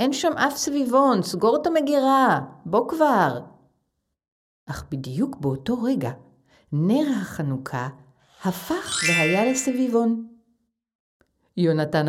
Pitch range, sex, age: 155-245 Hz, female, 50-69